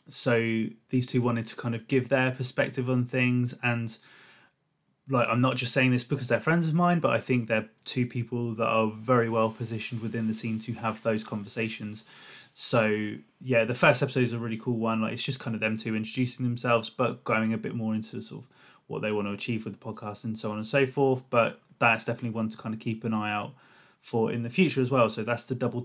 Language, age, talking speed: English, 20-39, 240 wpm